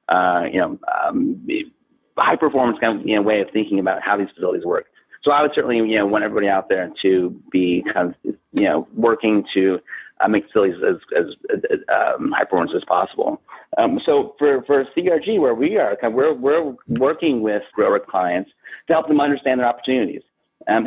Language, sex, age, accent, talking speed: English, male, 40-59, American, 195 wpm